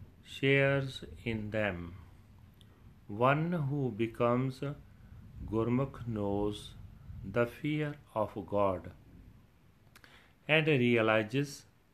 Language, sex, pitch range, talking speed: Punjabi, male, 105-130 Hz, 70 wpm